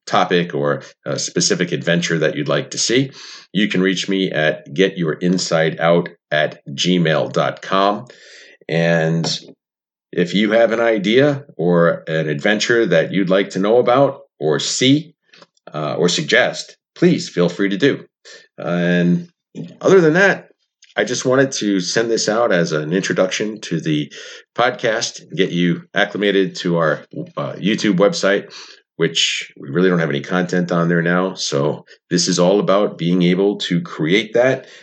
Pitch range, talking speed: 85-115 Hz, 150 wpm